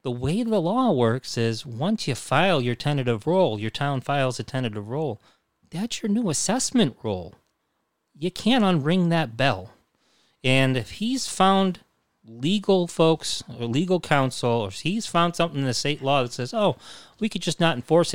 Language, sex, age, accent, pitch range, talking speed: English, male, 30-49, American, 120-175 Hz, 180 wpm